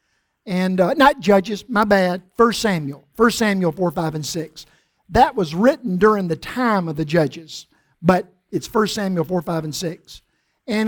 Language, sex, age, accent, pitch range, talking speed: English, male, 50-69, American, 175-215 Hz, 165 wpm